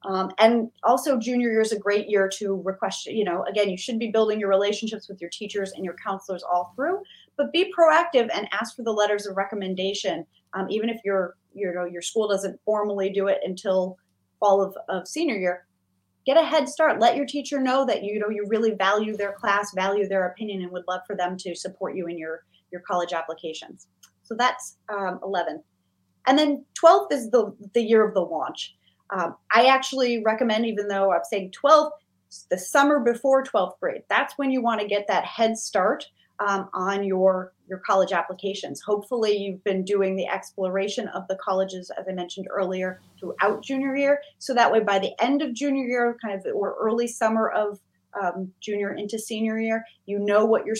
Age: 30-49